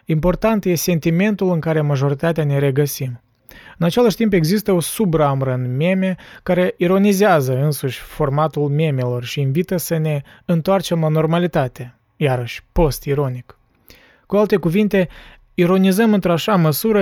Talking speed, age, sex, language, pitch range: 125 wpm, 20-39, male, Romanian, 140-175 Hz